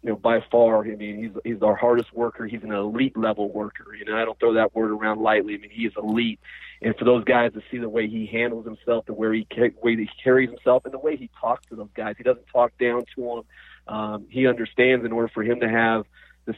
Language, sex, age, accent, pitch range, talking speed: English, male, 30-49, American, 110-120 Hz, 270 wpm